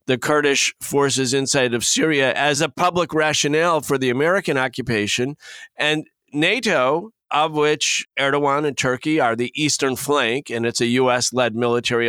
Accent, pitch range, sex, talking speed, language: American, 125-160 Hz, male, 150 wpm, English